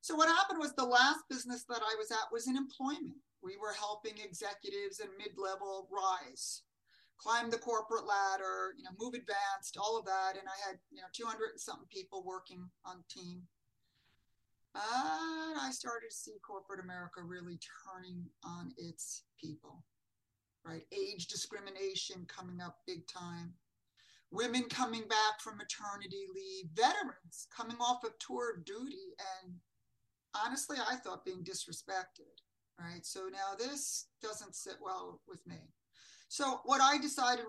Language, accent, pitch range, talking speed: English, American, 185-265 Hz, 155 wpm